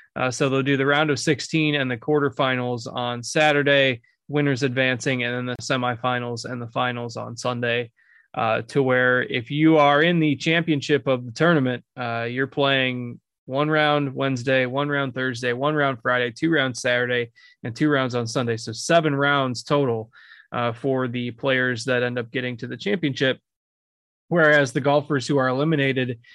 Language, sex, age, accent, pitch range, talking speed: English, male, 20-39, American, 125-140 Hz, 175 wpm